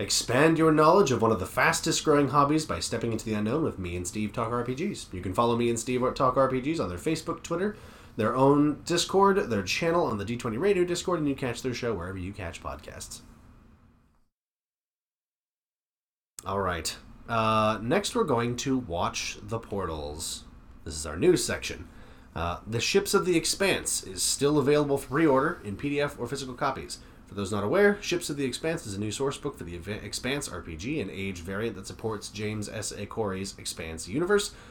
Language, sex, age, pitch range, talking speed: English, male, 30-49, 100-150 Hz, 190 wpm